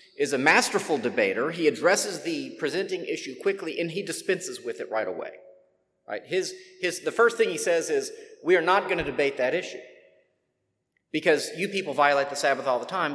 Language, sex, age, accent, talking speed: English, male, 40-59, American, 195 wpm